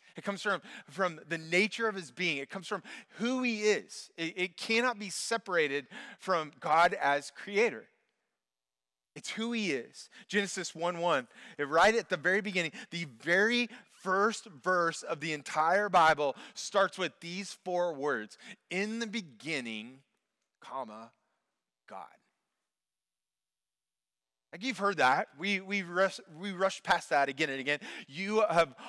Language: English